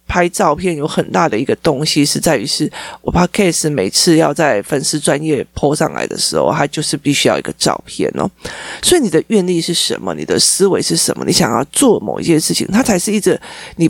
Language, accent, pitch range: Chinese, native, 160-230 Hz